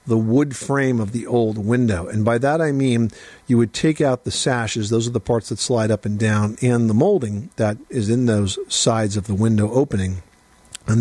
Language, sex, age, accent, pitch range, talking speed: English, male, 50-69, American, 110-130 Hz, 220 wpm